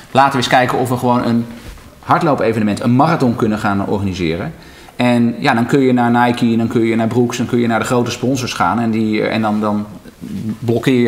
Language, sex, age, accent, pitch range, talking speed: Dutch, male, 40-59, Dutch, 105-125 Hz, 215 wpm